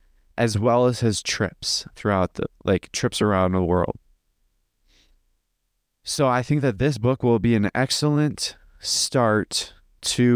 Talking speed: 140 wpm